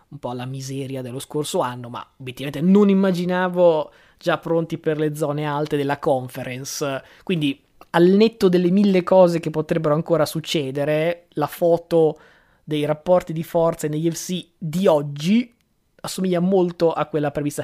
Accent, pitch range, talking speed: native, 145-175 Hz, 150 wpm